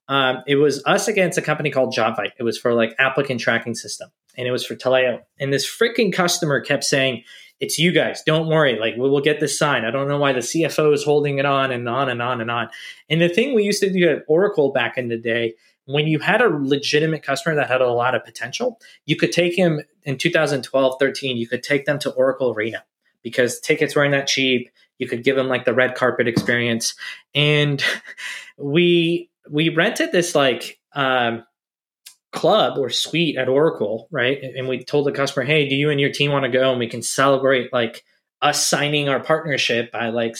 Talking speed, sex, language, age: 215 wpm, male, English, 20-39